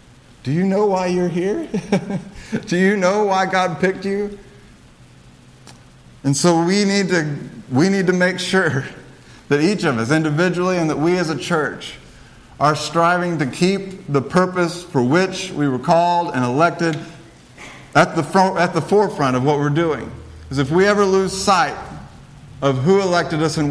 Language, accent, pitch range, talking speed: English, American, 130-175 Hz, 170 wpm